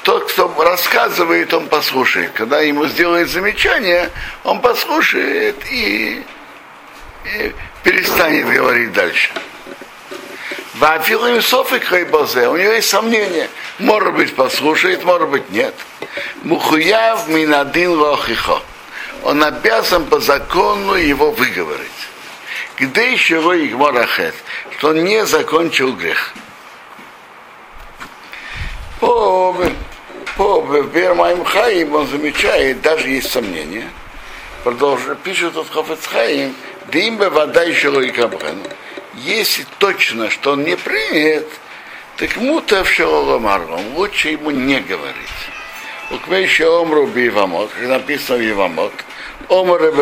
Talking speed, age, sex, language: 80 wpm, 60-79, male, Russian